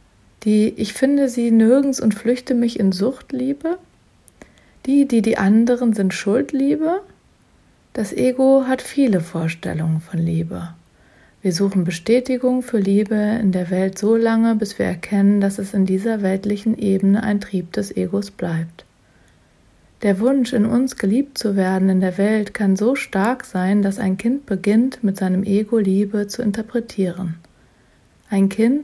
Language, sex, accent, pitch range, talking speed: German, female, German, 190-235 Hz, 150 wpm